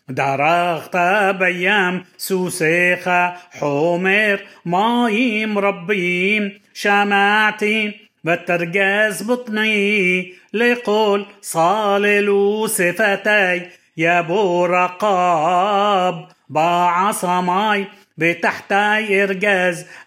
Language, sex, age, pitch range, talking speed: Hebrew, male, 30-49, 180-210 Hz, 50 wpm